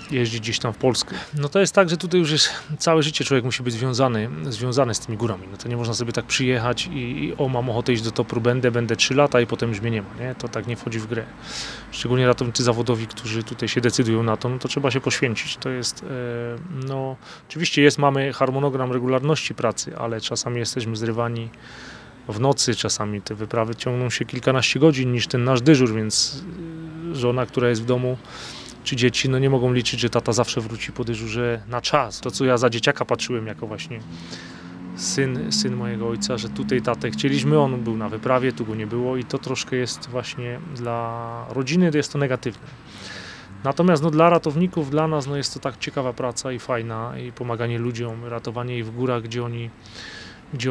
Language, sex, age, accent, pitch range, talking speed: Polish, male, 30-49, native, 115-135 Hz, 210 wpm